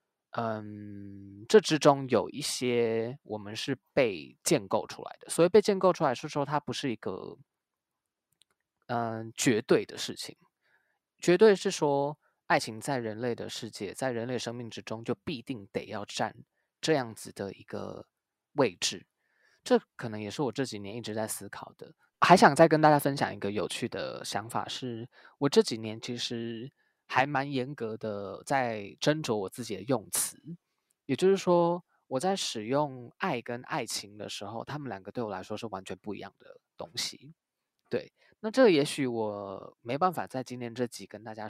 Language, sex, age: Chinese, male, 20-39